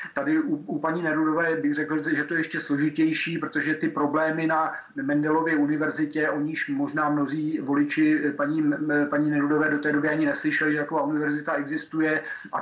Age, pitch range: 40-59, 150-160 Hz